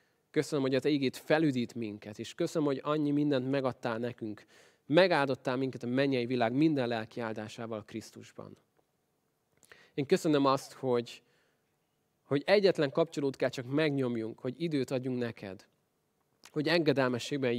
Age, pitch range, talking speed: 20-39, 115-145 Hz, 130 wpm